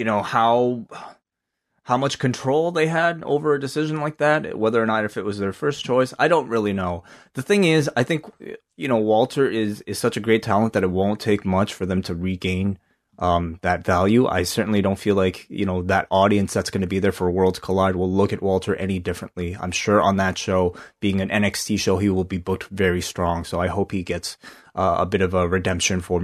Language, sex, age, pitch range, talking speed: English, male, 20-39, 95-115 Hz, 235 wpm